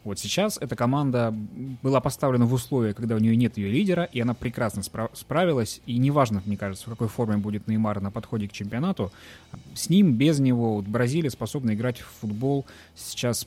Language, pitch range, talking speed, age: Russian, 110-135 Hz, 185 wpm, 20-39